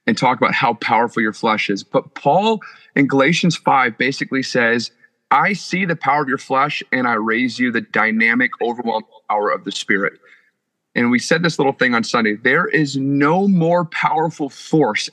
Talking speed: 185 wpm